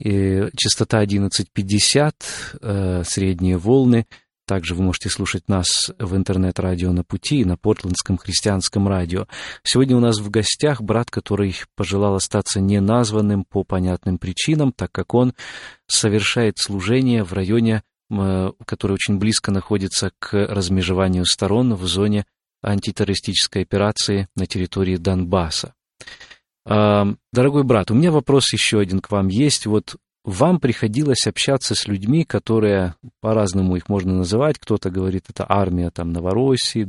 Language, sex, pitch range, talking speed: Russian, male, 95-120 Hz, 130 wpm